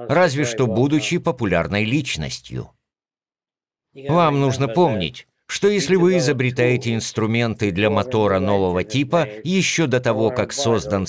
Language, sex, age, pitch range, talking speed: Russian, male, 50-69, 110-150 Hz, 120 wpm